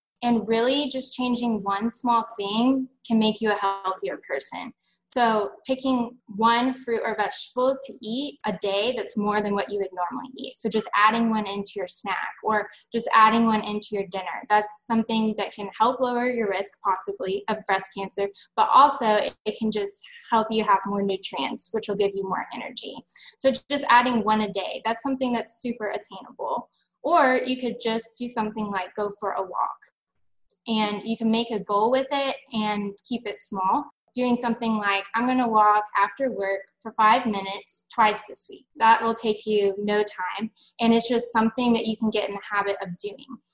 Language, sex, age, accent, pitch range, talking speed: English, female, 10-29, American, 205-240 Hz, 195 wpm